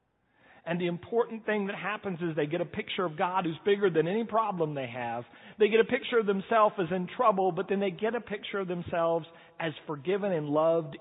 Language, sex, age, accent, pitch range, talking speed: English, male, 40-59, American, 130-195 Hz, 225 wpm